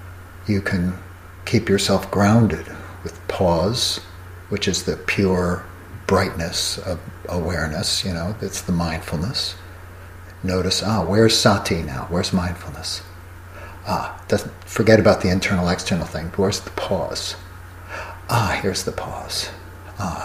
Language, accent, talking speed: English, American, 125 wpm